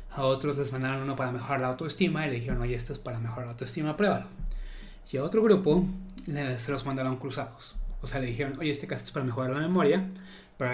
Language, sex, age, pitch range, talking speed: Spanish, male, 30-49, 125-155 Hz, 235 wpm